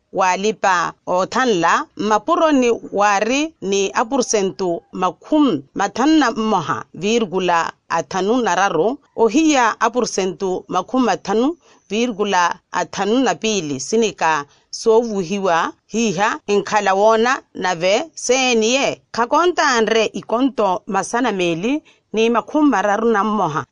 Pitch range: 185-245 Hz